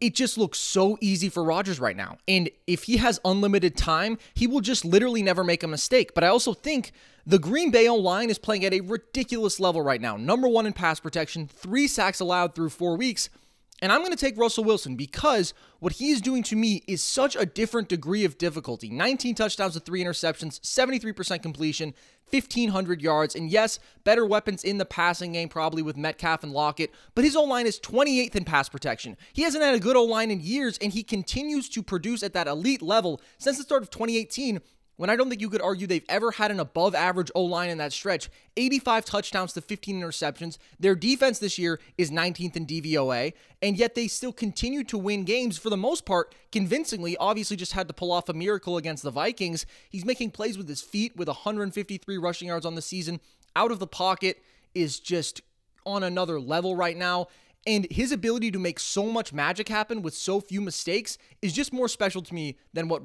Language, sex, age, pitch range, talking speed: English, male, 20-39, 170-225 Hz, 210 wpm